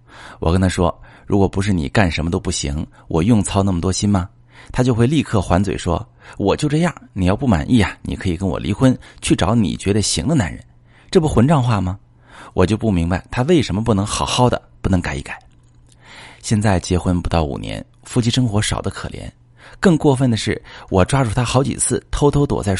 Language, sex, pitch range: Chinese, male, 90-125 Hz